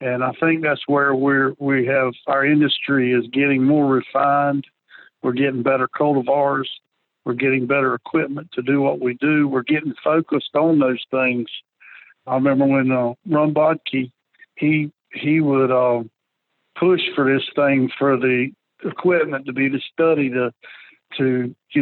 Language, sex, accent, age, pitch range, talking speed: English, male, American, 60-79, 130-150 Hz, 155 wpm